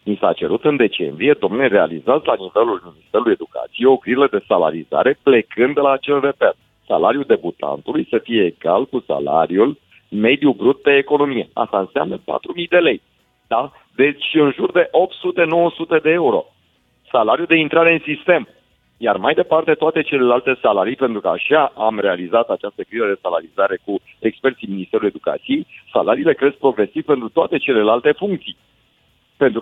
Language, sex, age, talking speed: Romanian, male, 50-69, 155 wpm